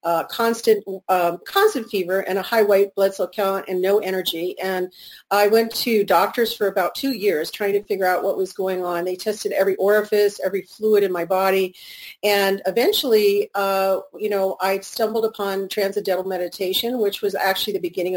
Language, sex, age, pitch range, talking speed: English, female, 40-59, 190-220 Hz, 185 wpm